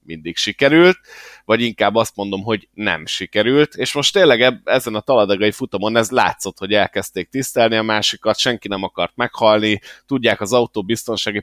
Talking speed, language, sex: 160 wpm, Hungarian, male